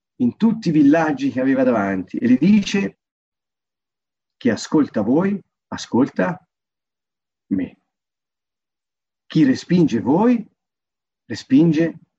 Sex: male